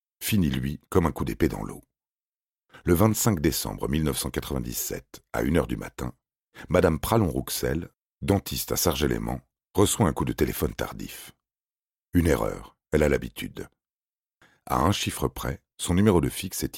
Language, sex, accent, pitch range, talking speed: French, male, French, 65-95 Hz, 155 wpm